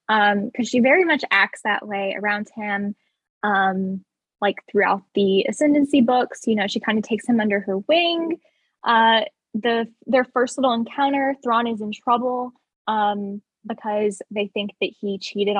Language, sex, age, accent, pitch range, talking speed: English, female, 10-29, American, 205-250 Hz, 165 wpm